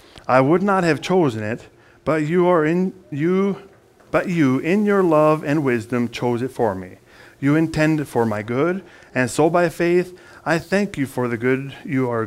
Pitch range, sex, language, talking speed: 115-155 Hz, male, English, 190 wpm